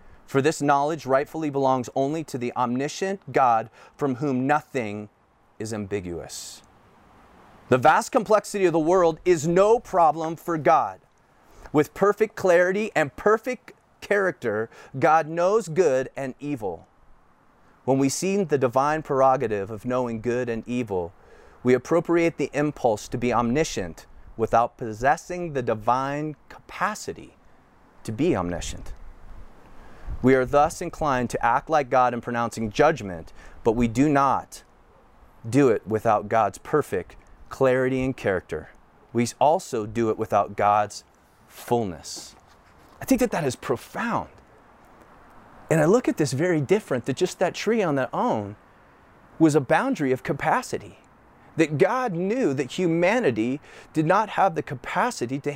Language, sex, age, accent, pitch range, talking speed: English, male, 30-49, American, 115-165 Hz, 140 wpm